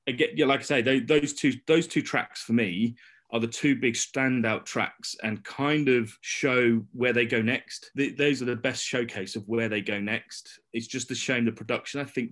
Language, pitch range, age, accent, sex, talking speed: English, 110-135 Hz, 30-49, British, male, 225 wpm